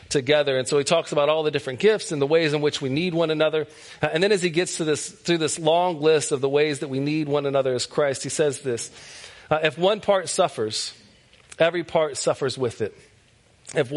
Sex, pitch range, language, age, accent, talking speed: male, 140-170 Hz, English, 40-59, American, 235 wpm